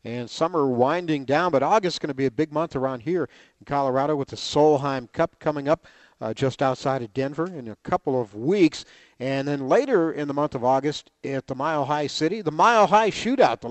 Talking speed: 225 wpm